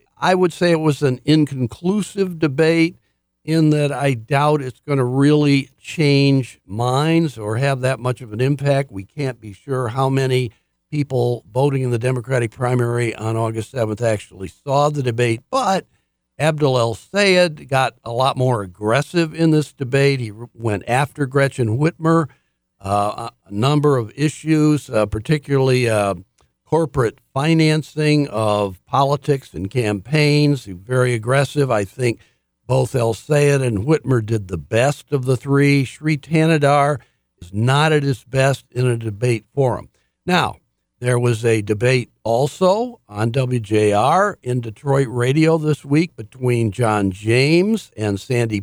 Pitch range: 115-145 Hz